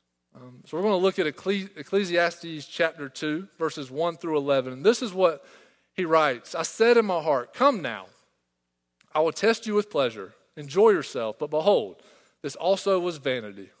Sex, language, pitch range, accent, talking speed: male, English, 130-170 Hz, American, 180 wpm